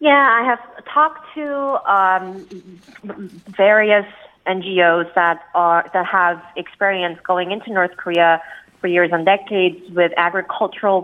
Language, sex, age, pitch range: Korean, female, 30-49, 170-200 Hz